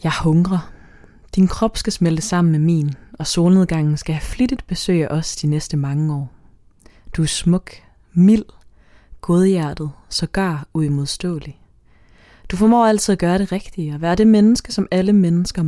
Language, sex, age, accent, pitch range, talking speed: Danish, female, 20-39, native, 150-200 Hz, 160 wpm